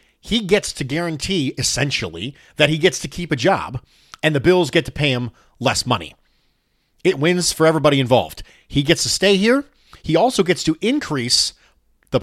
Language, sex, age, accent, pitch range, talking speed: English, male, 40-59, American, 120-165 Hz, 180 wpm